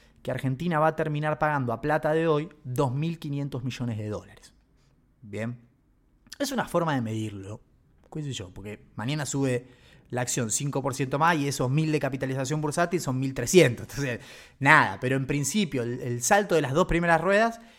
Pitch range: 125-155 Hz